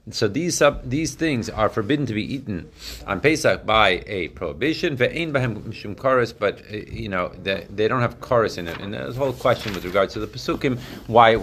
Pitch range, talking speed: 105-135 Hz, 190 wpm